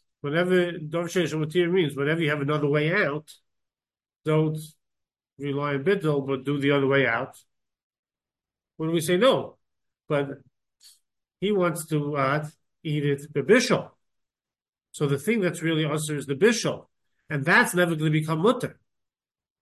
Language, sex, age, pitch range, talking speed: English, male, 40-59, 145-180 Hz, 150 wpm